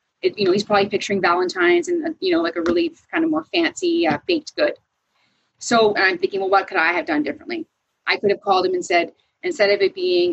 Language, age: English, 30-49